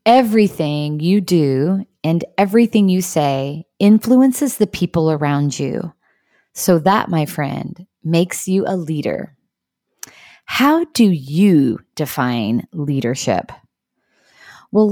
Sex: female